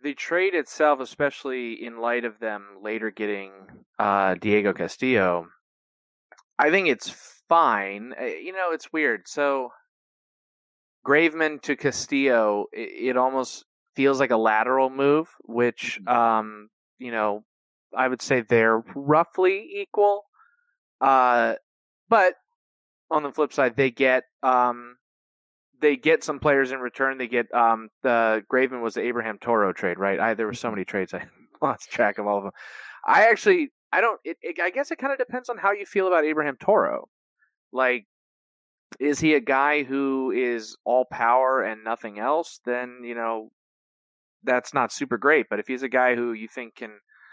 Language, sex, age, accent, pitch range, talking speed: English, male, 20-39, American, 110-140 Hz, 160 wpm